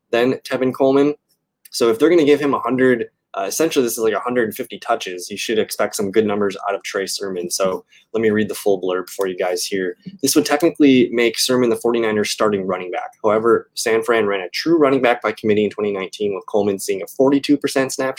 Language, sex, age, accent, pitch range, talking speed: English, male, 20-39, American, 105-155 Hz, 225 wpm